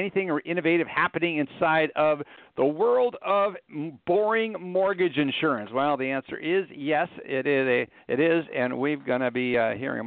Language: English